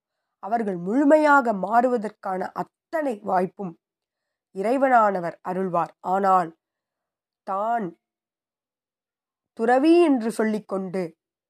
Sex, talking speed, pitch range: female, 65 wpm, 185-255 Hz